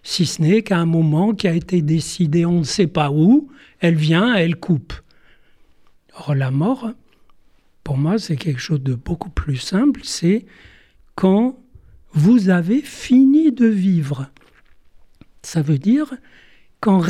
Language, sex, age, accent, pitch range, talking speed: French, male, 60-79, French, 165-225 Hz, 145 wpm